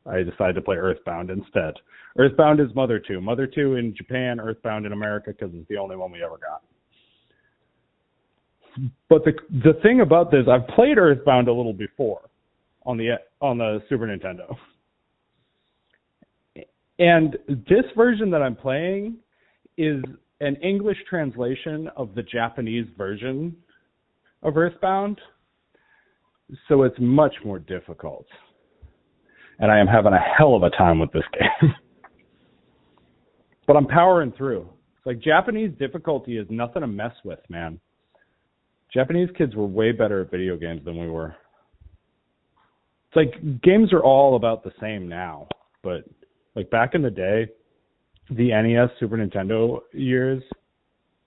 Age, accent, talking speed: 40-59, American, 140 wpm